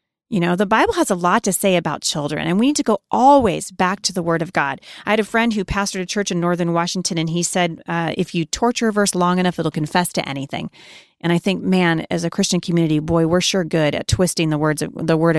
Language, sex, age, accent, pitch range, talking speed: English, female, 30-49, American, 160-205 Hz, 265 wpm